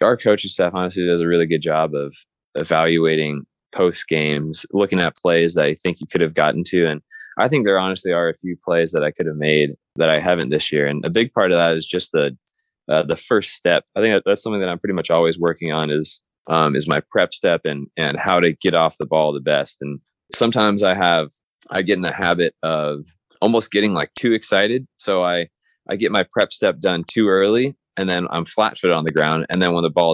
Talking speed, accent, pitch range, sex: 240 wpm, American, 80-95 Hz, male